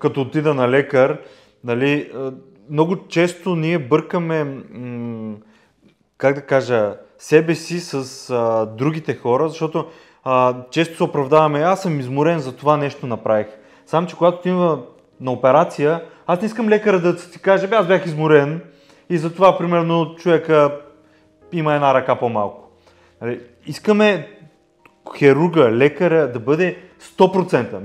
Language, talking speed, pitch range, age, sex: Bulgarian, 130 wpm, 135-175 Hz, 30-49, male